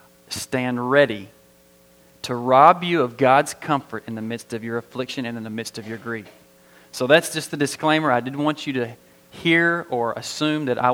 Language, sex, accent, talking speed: English, male, American, 195 wpm